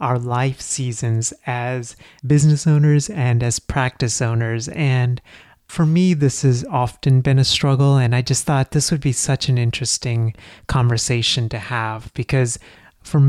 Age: 30-49